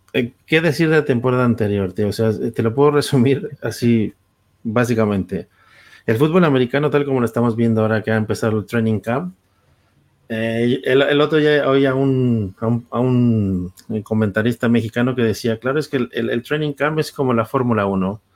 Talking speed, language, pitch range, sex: 190 wpm, Spanish, 110-130 Hz, male